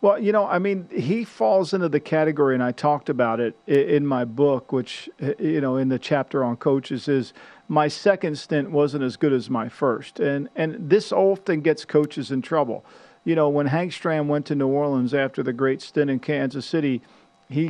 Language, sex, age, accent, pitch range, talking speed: English, male, 50-69, American, 135-160 Hz, 210 wpm